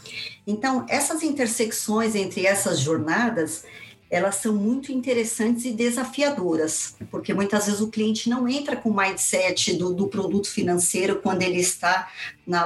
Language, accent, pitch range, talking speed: Portuguese, Brazilian, 180-245 Hz, 140 wpm